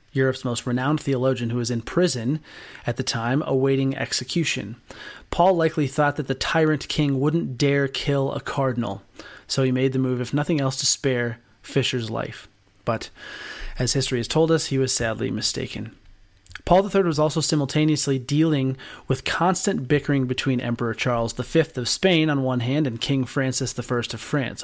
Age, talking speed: 30-49, 175 wpm